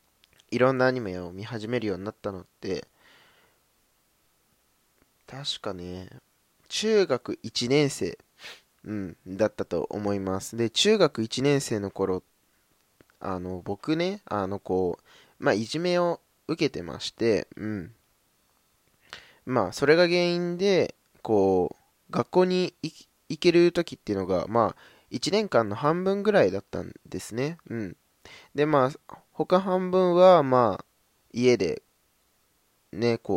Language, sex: Japanese, male